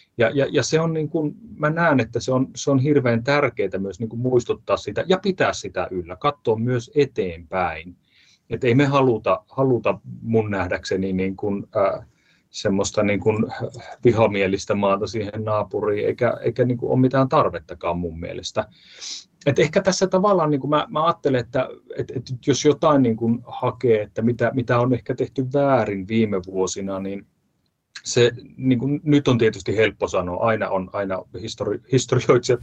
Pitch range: 110-135 Hz